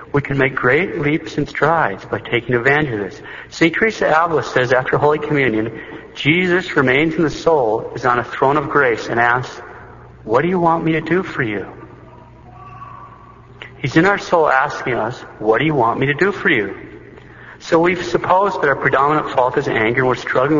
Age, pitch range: 50-69, 120-150 Hz